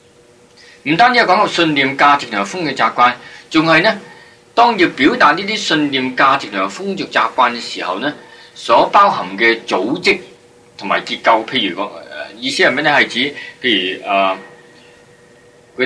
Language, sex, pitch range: Chinese, male, 120-165 Hz